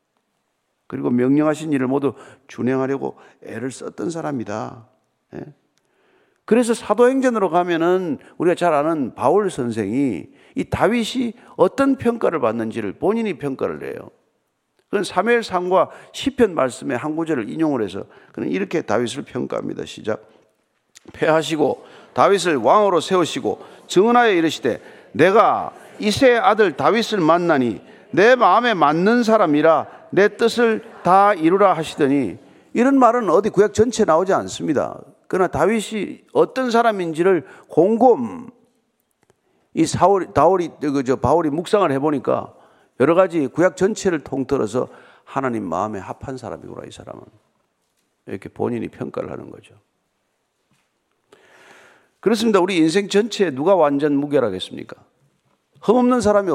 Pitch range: 155-235 Hz